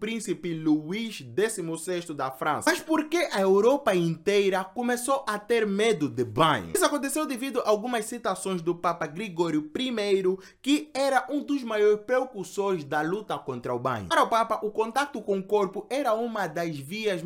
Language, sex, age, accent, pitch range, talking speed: Portuguese, male, 20-39, Brazilian, 170-240 Hz, 170 wpm